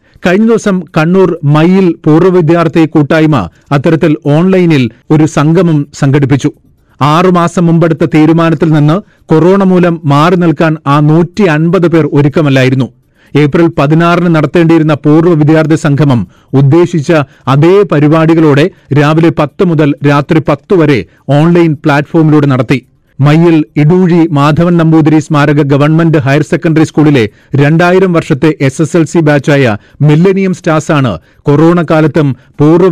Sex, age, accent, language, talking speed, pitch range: male, 40-59, native, Malayalam, 115 wpm, 145-170 Hz